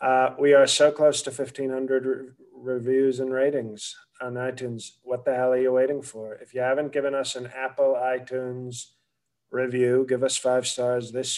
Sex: male